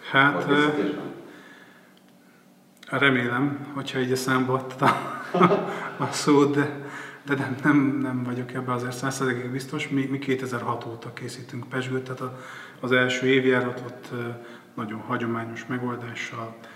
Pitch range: 115-130 Hz